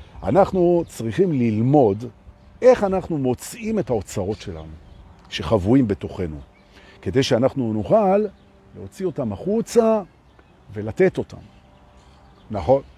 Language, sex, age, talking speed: Hebrew, male, 50-69, 90 wpm